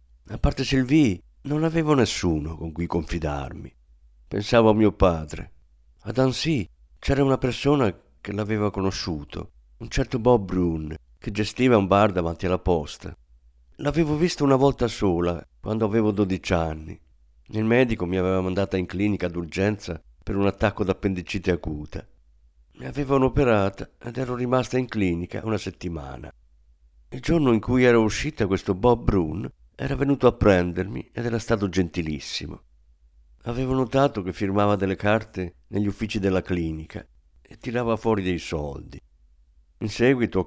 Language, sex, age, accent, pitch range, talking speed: Italian, male, 50-69, native, 75-115 Hz, 150 wpm